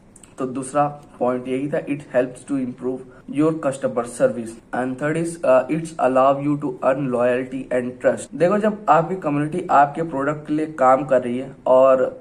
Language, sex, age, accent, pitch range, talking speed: Hindi, male, 20-39, native, 130-155 Hz, 175 wpm